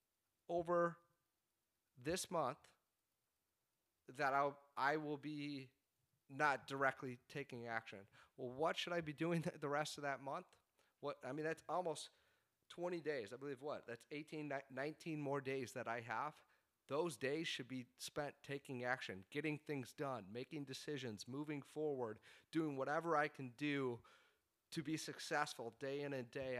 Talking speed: 155 wpm